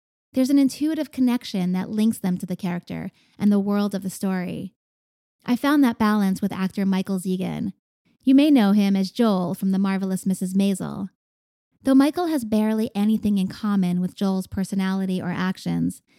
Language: English